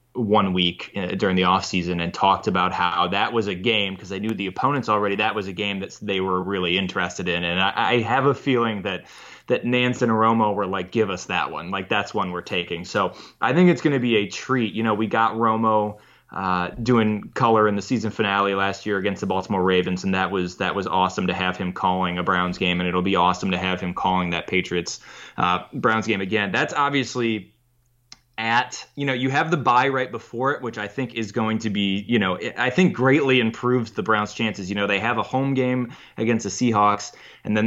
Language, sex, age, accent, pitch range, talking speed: English, male, 20-39, American, 95-120 Hz, 235 wpm